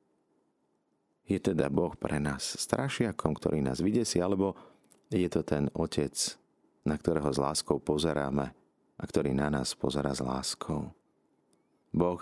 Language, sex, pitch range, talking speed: Slovak, male, 75-90 Hz, 135 wpm